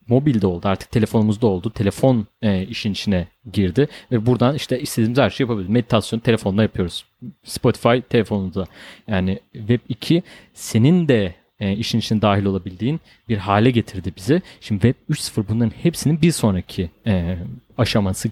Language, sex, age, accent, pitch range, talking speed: Turkish, male, 30-49, native, 105-145 Hz, 140 wpm